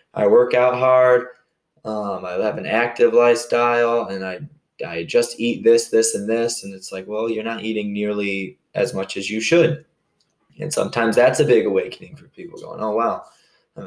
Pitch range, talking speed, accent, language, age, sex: 105-145 Hz, 190 wpm, American, English, 20-39, male